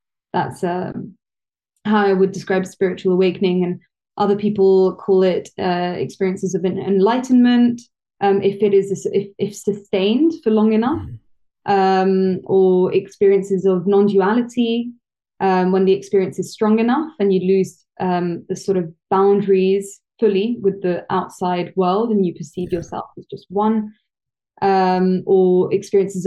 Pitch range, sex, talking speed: 185-200 Hz, female, 150 wpm